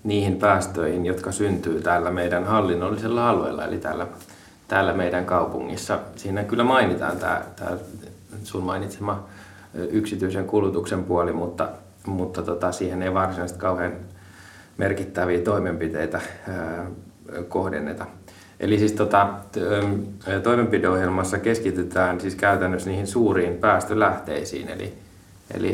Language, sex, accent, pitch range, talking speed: Finnish, male, native, 90-100 Hz, 105 wpm